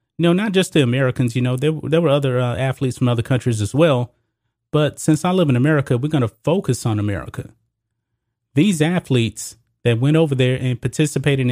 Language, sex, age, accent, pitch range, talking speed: English, male, 30-49, American, 115-150 Hz, 215 wpm